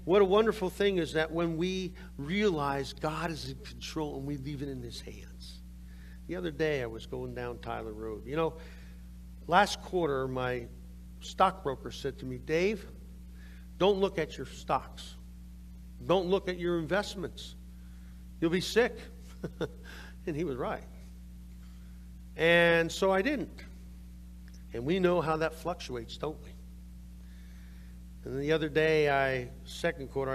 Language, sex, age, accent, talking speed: English, male, 50-69, American, 150 wpm